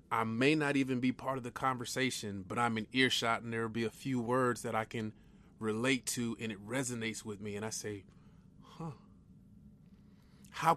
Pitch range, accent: 120-160 Hz, American